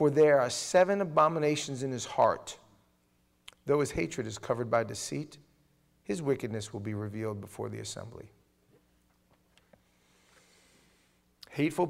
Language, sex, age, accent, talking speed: English, male, 40-59, American, 120 wpm